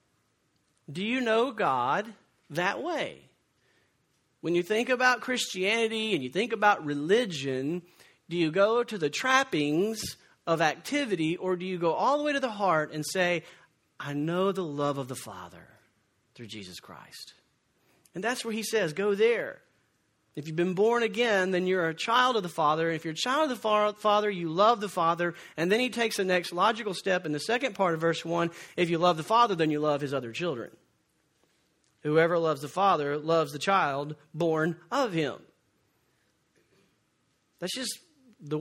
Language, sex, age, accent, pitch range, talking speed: English, male, 40-59, American, 160-225 Hz, 180 wpm